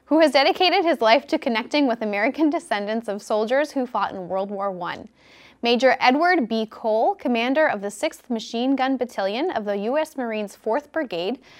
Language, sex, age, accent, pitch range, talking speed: English, female, 10-29, American, 220-305 Hz, 180 wpm